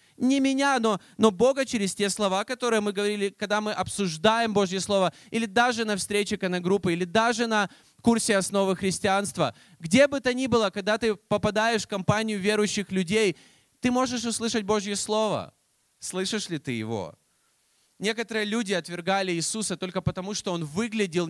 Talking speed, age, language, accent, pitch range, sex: 165 wpm, 20-39, Russian, native, 190-230 Hz, male